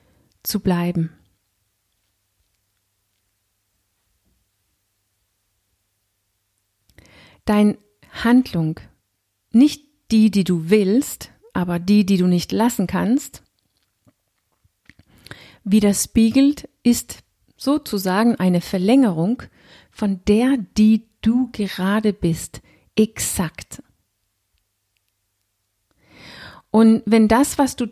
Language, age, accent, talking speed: German, 50-69, German, 70 wpm